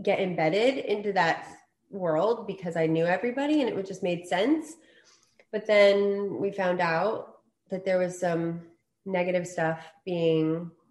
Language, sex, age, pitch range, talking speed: English, female, 20-39, 170-205 Hz, 150 wpm